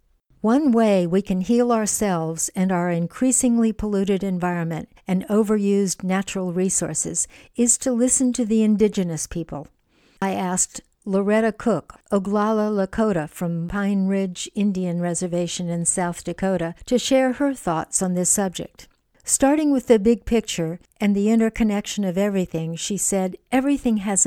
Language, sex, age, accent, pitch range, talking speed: English, female, 60-79, American, 175-225 Hz, 140 wpm